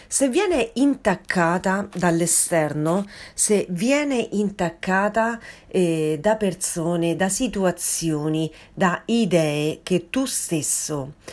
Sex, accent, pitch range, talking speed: female, native, 165-230 Hz, 90 wpm